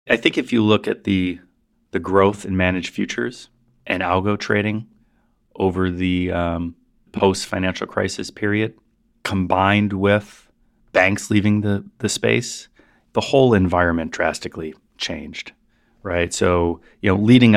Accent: American